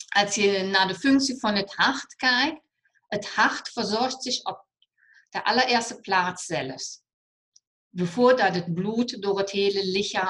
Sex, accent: female, German